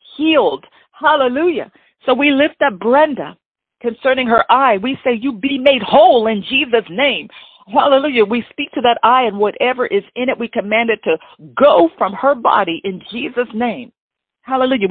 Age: 50-69